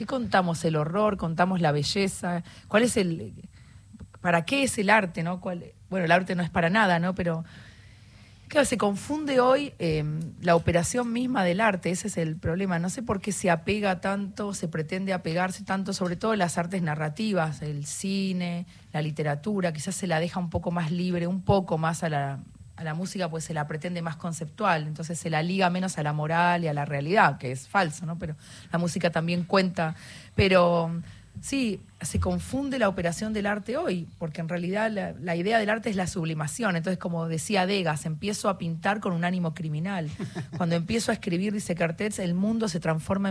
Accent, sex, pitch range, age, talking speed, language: Argentinian, female, 160-195 Hz, 30-49, 200 wpm, Spanish